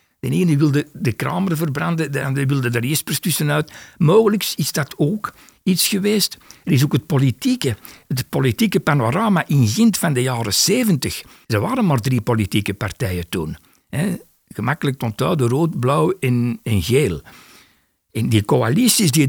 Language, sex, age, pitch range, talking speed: Dutch, male, 60-79, 125-175 Hz, 155 wpm